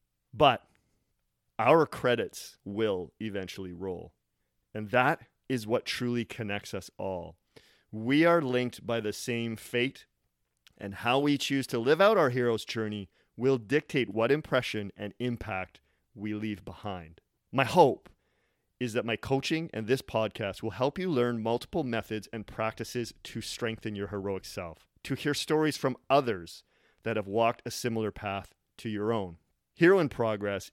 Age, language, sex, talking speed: 30-49, English, male, 155 wpm